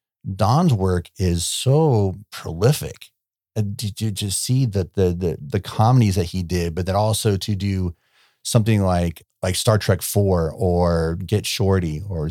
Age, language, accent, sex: 40-59, English, American, male